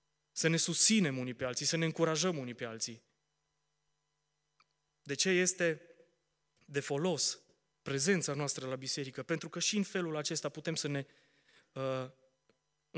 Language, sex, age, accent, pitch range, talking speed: Romanian, male, 20-39, native, 140-165 Hz, 145 wpm